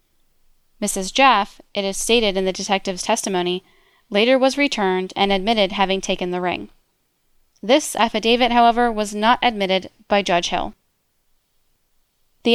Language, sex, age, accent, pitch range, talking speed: English, female, 10-29, American, 190-230 Hz, 135 wpm